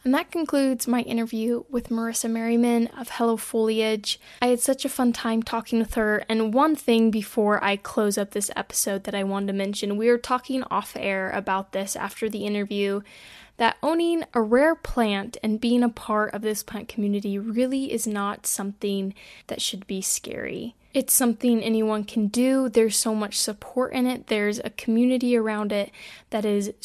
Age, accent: 10-29, American